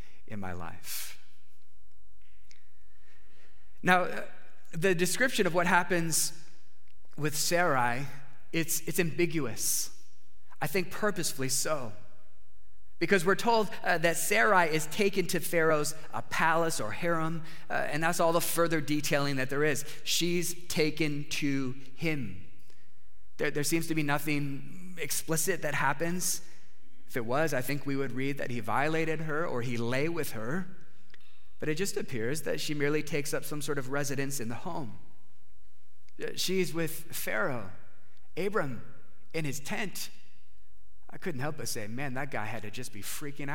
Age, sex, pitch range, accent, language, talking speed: 30-49, male, 110-165 Hz, American, English, 150 wpm